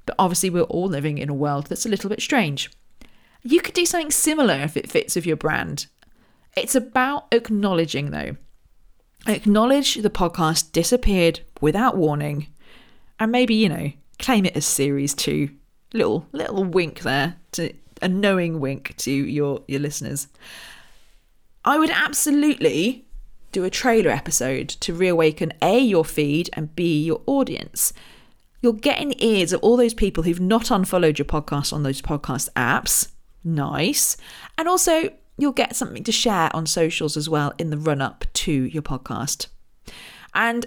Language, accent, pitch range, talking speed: English, British, 150-230 Hz, 160 wpm